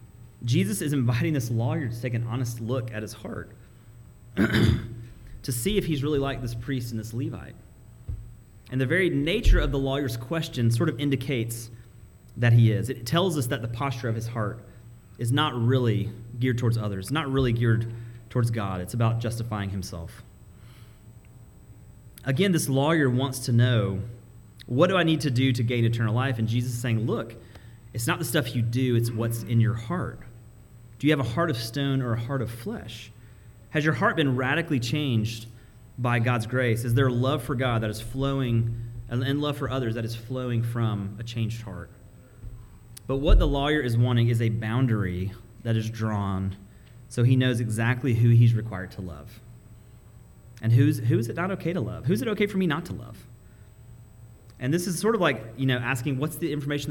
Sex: male